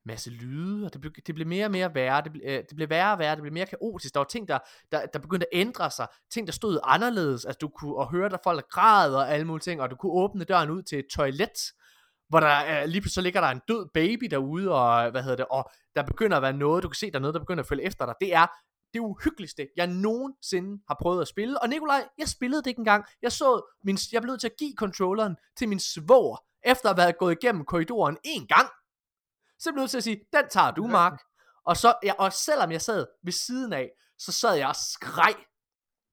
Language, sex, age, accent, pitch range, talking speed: Danish, male, 20-39, native, 135-200 Hz, 250 wpm